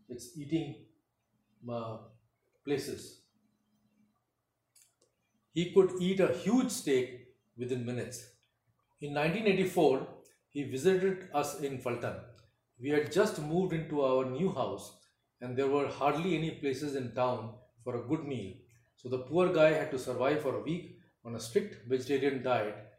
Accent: Indian